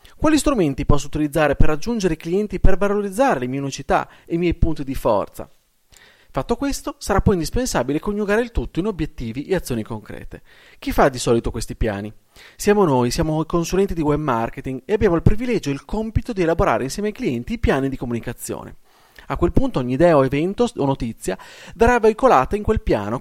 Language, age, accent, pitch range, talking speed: Italian, 30-49, native, 125-190 Hz, 195 wpm